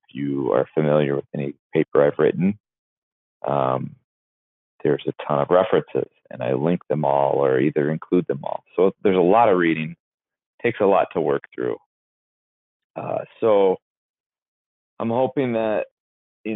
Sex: male